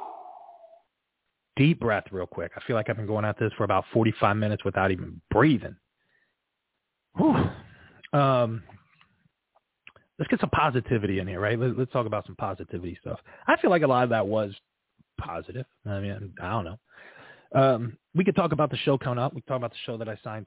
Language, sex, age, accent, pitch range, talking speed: English, male, 30-49, American, 105-125 Hz, 195 wpm